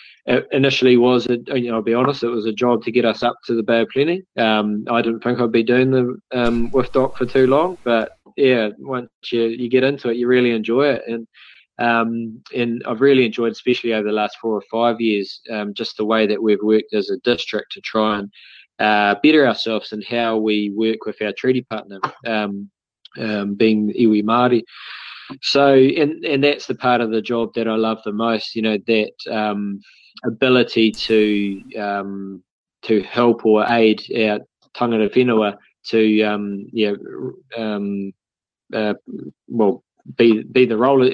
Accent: Australian